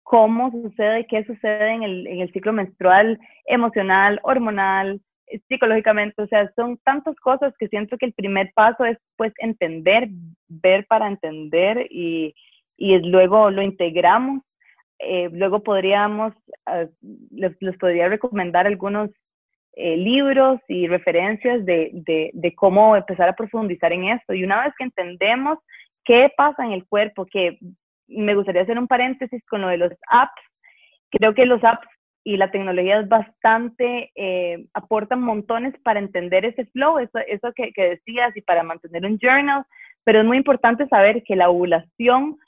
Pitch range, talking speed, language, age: 190-245 Hz, 160 wpm, Spanish, 30-49